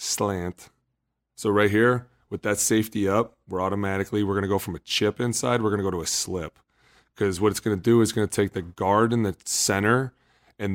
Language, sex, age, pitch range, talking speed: English, male, 30-49, 95-110 Hz, 230 wpm